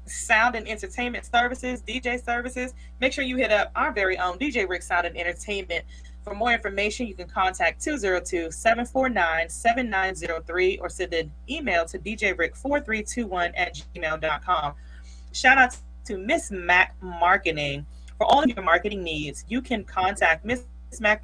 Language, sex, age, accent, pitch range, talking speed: English, female, 30-49, American, 170-230 Hz, 155 wpm